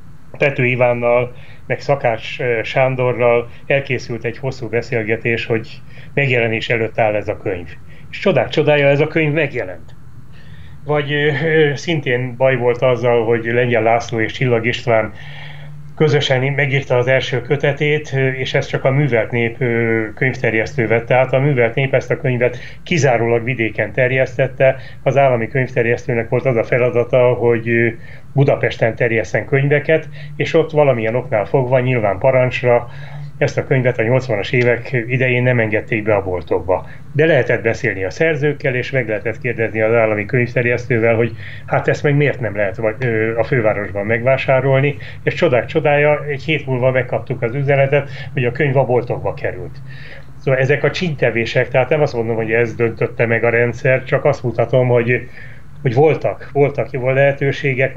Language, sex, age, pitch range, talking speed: Hungarian, male, 30-49, 120-140 Hz, 150 wpm